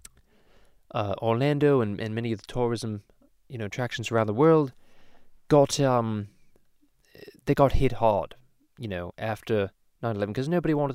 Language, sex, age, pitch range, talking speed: English, male, 20-39, 100-135 Hz, 150 wpm